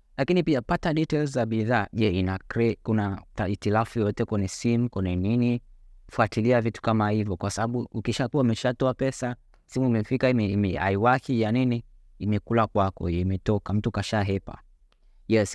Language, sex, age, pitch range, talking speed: Swahili, male, 20-39, 105-125 Hz, 150 wpm